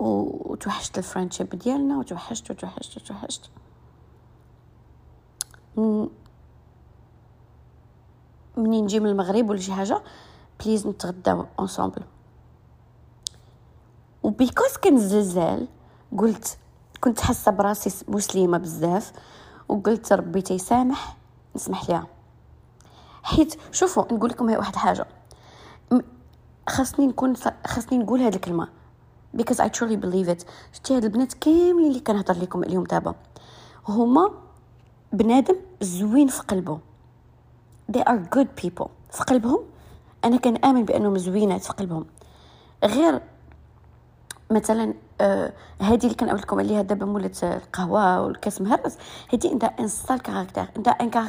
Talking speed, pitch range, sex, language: 95 wpm, 195-255 Hz, female, Arabic